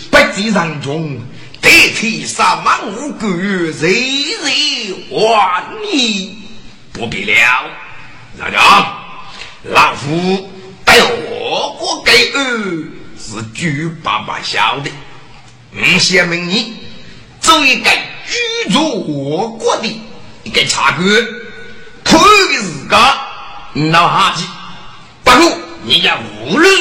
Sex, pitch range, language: male, 155-235 Hz, Chinese